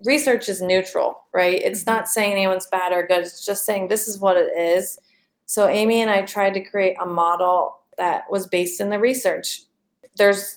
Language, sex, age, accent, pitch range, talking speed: English, female, 30-49, American, 180-210 Hz, 200 wpm